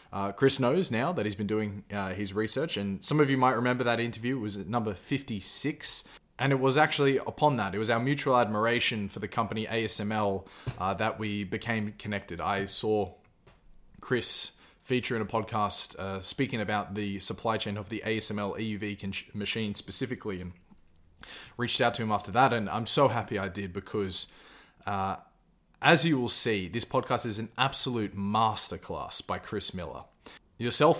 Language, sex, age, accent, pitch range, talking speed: English, male, 20-39, Australian, 100-125 Hz, 180 wpm